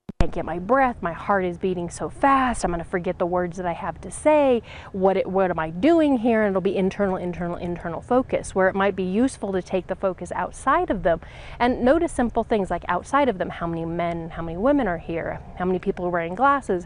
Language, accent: English, American